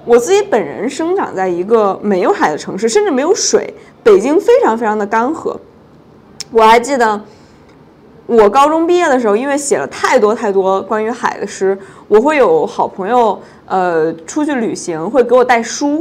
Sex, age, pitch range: female, 20-39, 205-300 Hz